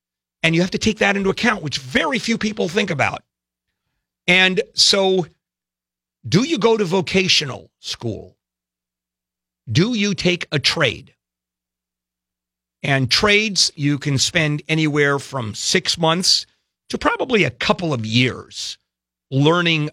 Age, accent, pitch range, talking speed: 50-69, American, 105-165 Hz, 130 wpm